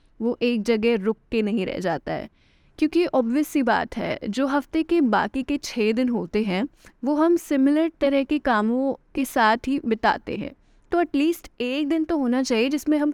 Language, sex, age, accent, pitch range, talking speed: Hindi, female, 10-29, native, 230-285 Hz, 195 wpm